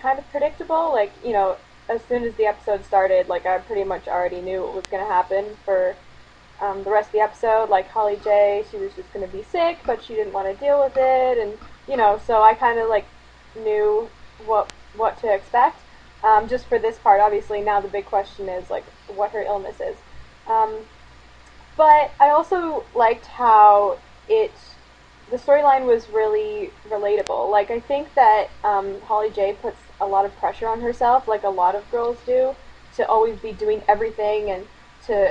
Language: English